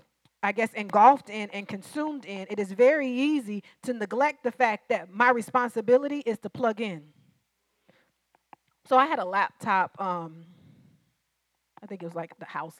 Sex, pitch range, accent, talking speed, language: female, 200-255 Hz, American, 165 wpm, English